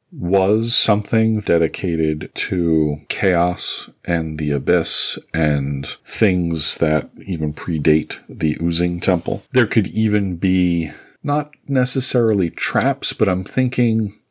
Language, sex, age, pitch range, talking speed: English, male, 40-59, 75-105 Hz, 110 wpm